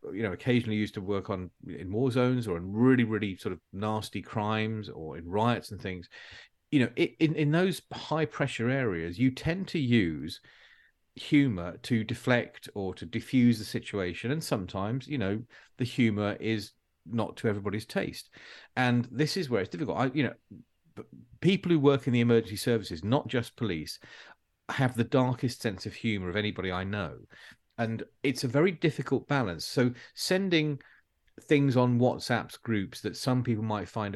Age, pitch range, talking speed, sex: 40-59, 105-130 Hz, 175 wpm, male